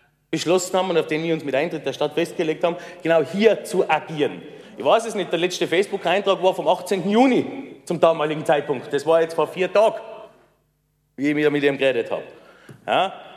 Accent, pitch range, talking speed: Austrian, 165-215 Hz, 195 wpm